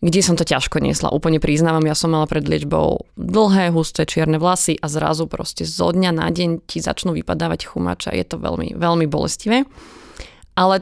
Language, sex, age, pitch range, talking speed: Slovak, female, 20-39, 160-190 Hz, 185 wpm